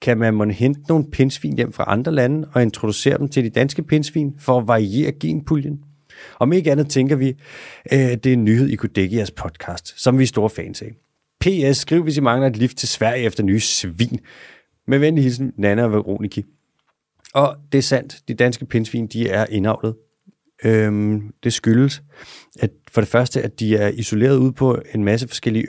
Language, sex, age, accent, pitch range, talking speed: Danish, male, 30-49, native, 110-140 Hz, 205 wpm